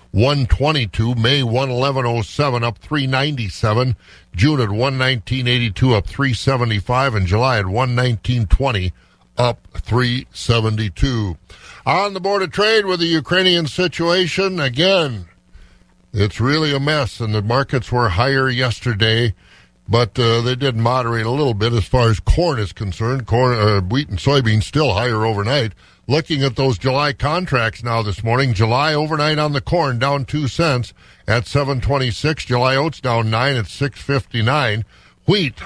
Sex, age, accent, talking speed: male, 60-79, American, 145 wpm